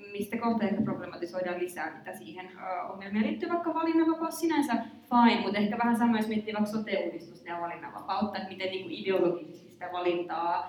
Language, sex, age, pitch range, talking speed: Finnish, female, 20-39, 190-235 Hz, 155 wpm